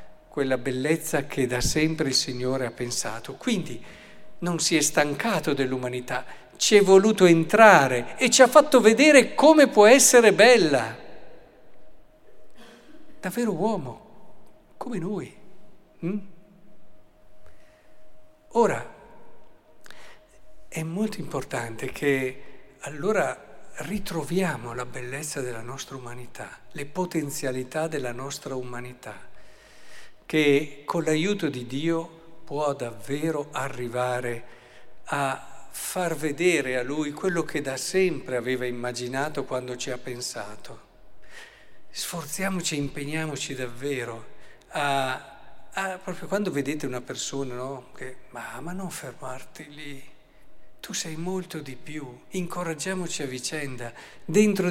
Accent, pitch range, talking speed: native, 130-180 Hz, 105 wpm